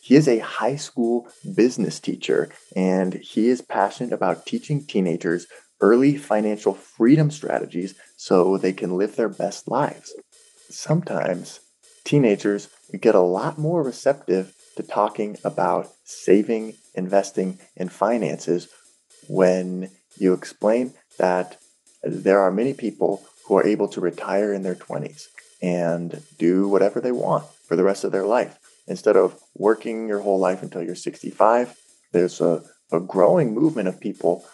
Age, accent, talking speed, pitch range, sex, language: 20-39, American, 140 wpm, 90-115 Hz, male, English